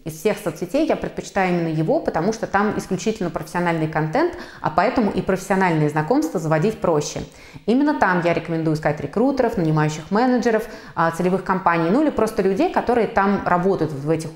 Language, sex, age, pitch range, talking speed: Russian, female, 20-39, 165-215 Hz, 165 wpm